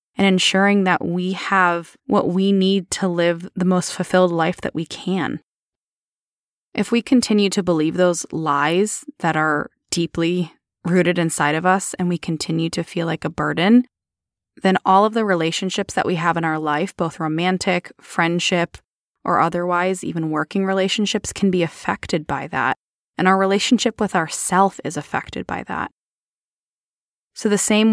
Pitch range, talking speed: 165-195 Hz, 160 wpm